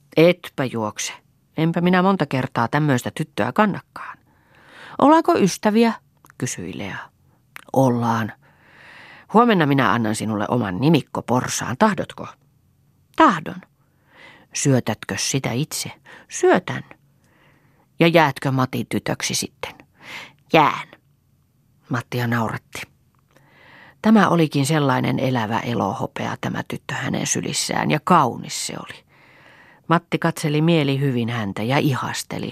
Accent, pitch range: native, 125-165 Hz